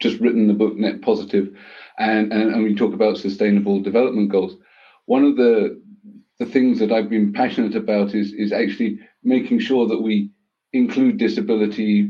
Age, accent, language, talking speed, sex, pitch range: 40-59, British, English, 170 wpm, male, 105-120 Hz